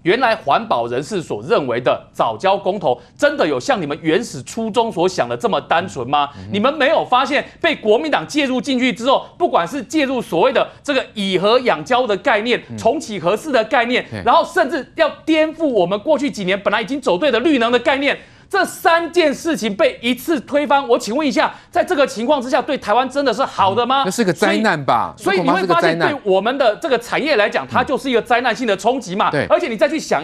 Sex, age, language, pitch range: male, 30-49, Chinese, 210-295 Hz